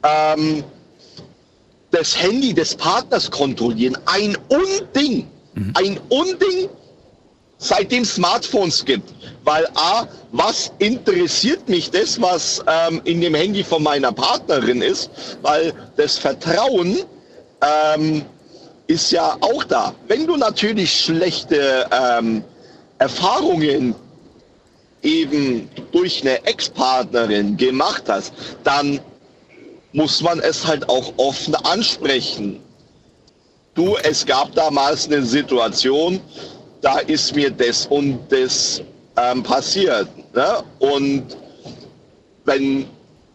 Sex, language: male, German